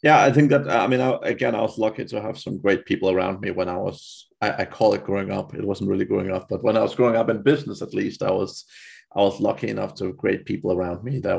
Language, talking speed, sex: English, 290 wpm, male